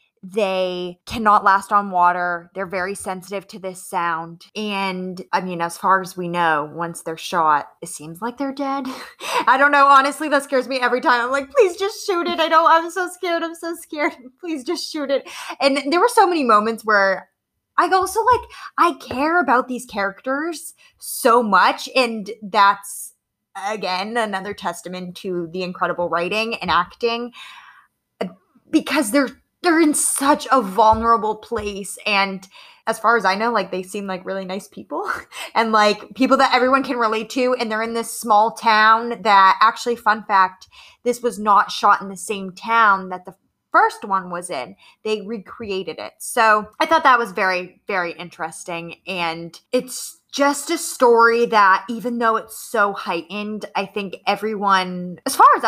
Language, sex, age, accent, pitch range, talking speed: English, female, 20-39, American, 190-270 Hz, 175 wpm